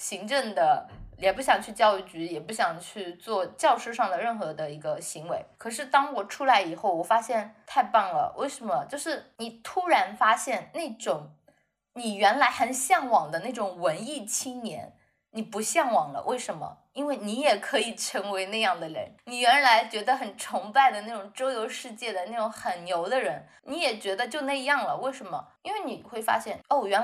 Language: Chinese